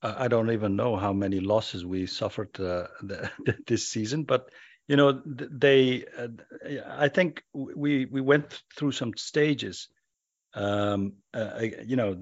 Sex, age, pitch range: male, 50-69, 105-130 Hz